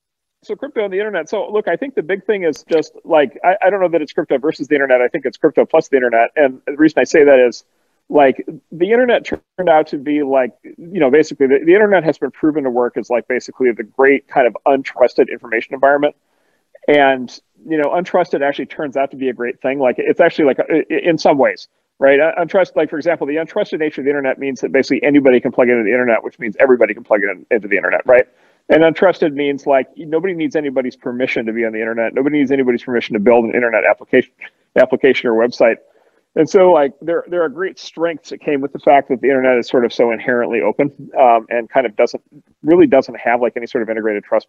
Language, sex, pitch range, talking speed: Portuguese, male, 120-160 Hz, 245 wpm